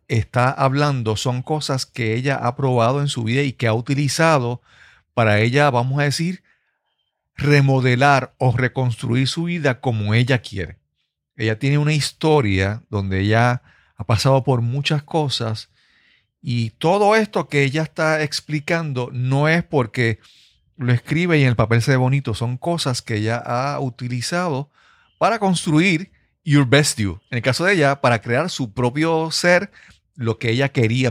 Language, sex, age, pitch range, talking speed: Spanish, male, 40-59, 115-150 Hz, 160 wpm